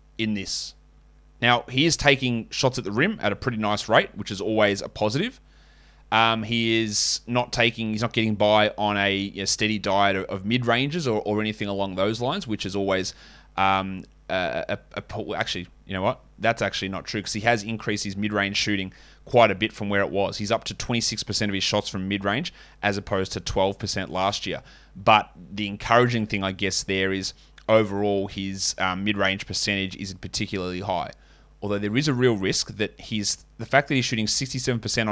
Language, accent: English, Australian